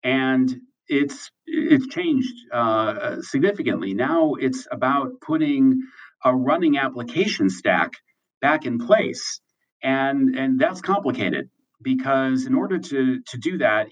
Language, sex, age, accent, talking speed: English, male, 50-69, American, 120 wpm